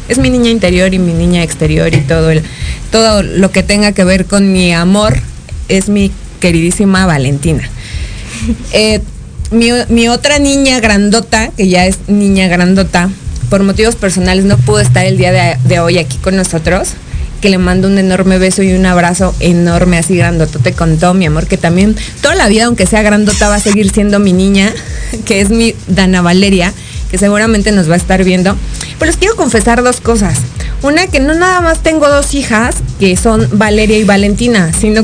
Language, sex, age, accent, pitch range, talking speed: Spanish, female, 30-49, Mexican, 180-230 Hz, 190 wpm